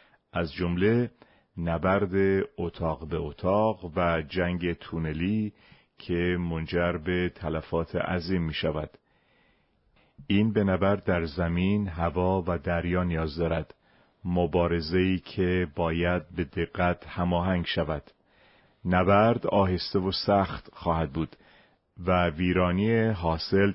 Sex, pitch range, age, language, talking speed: male, 85-95 Hz, 40-59, Persian, 105 wpm